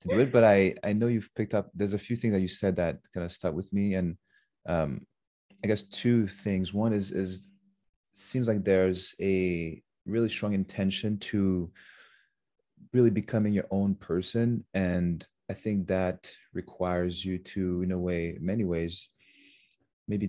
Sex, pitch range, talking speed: male, 90-100 Hz, 170 wpm